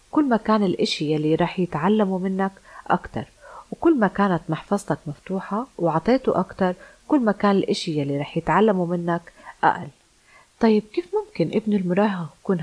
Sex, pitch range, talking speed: female, 155-205 Hz, 145 wpm